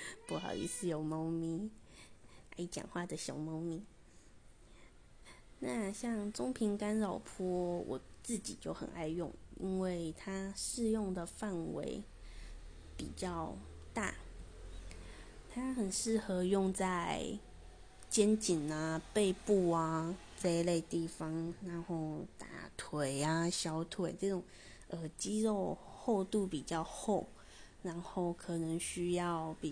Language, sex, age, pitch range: Chinese, female, 20-39, 160-210 Hz